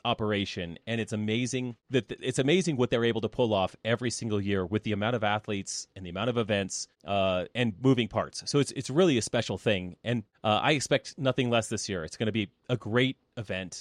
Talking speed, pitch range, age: 230 wpm, 105-135 Hz, 30-49